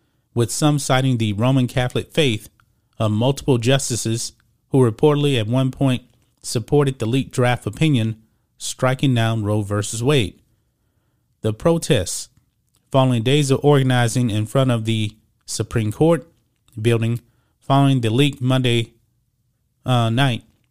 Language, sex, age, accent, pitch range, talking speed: English, male, 30-49, American, 115-140 Hz, 130 wpm